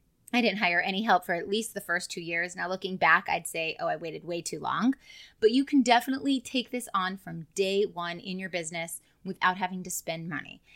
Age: 30-49